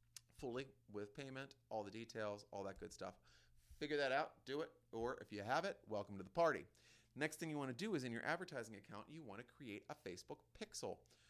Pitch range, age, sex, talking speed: 100-140 Hz, 40-59, male, 225 wpm